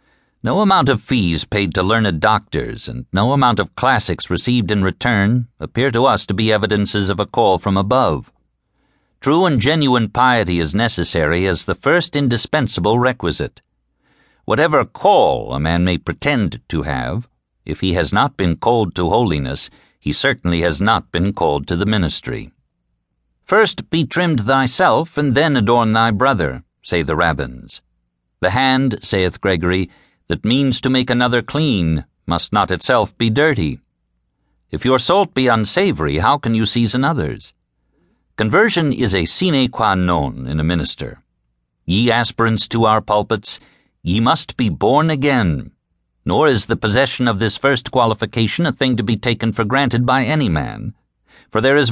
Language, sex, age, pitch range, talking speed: English, male, 60-79, 90-130 Hz, 160 wpm